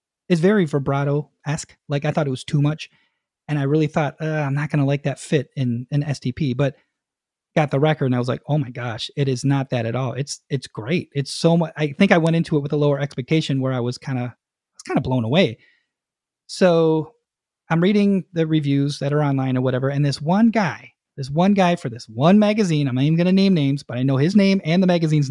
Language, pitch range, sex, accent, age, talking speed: English, 140-180 Hz, male, American, 30-49, 245 wpm